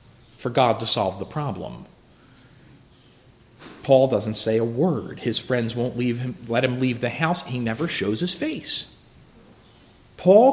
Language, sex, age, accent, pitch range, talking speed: English, male, 40-59, American, 120-180 Hz, 155 wpm